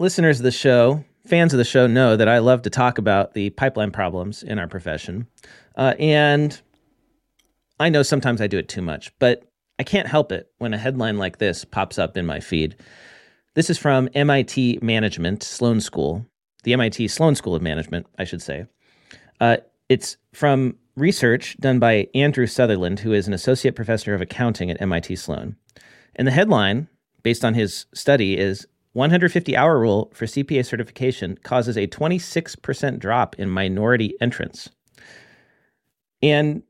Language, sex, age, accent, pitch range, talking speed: English, male, 40-59, American, 105-135 Hz, 165 wpm